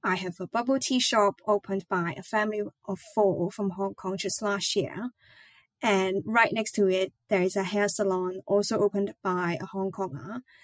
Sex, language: female, English